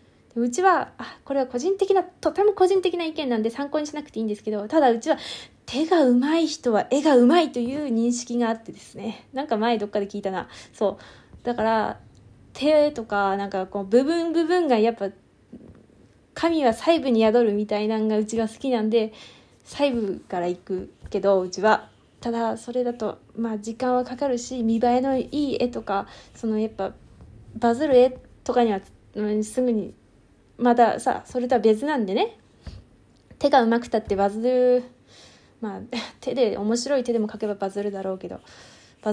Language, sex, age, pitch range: Japanese, female, 20-39, 210-250 Hz